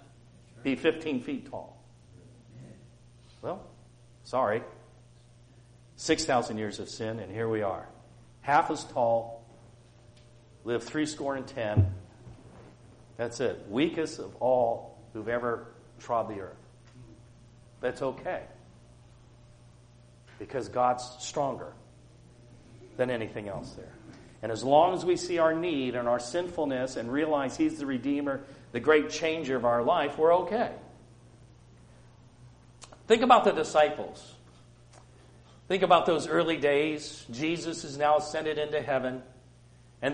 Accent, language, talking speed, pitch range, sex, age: American, English, 120 wpm, 120-155 Hz, male, 50-69